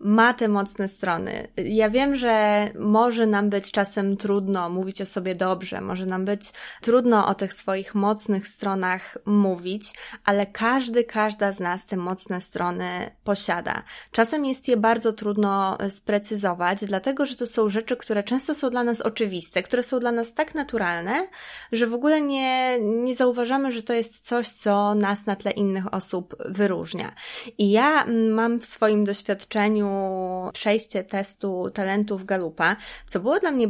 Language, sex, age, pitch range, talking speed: Polish, female, 20-39, 190-235 Hz, 160 wpm